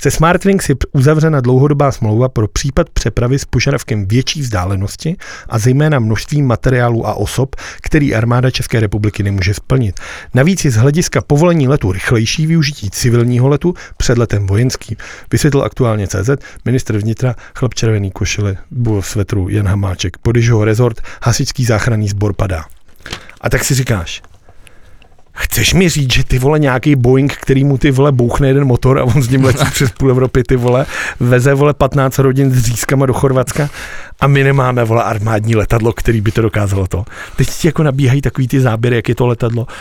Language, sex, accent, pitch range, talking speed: Czech, male, native, 110-140 Hz, 170 wpm